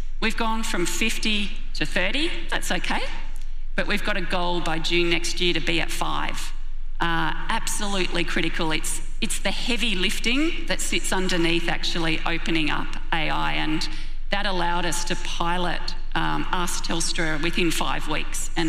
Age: 40-59